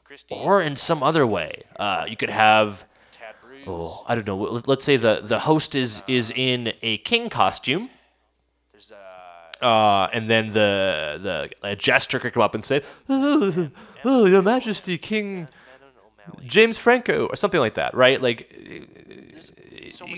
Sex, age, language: male, 30-49, English